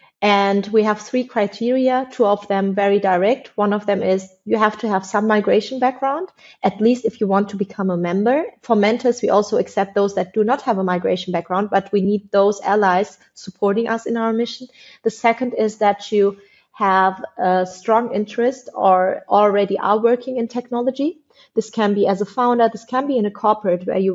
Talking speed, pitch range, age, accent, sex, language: 205 wpm, 195-230 Hz, 30-49, German, female, English